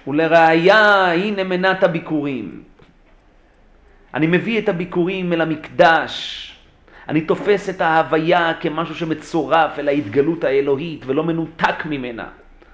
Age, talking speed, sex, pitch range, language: 40-59, 105 wpm, male, 140-175 Hz, Hebrew